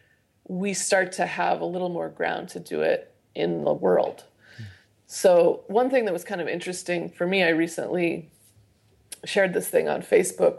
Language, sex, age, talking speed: English, female, 30-49, 175 wpm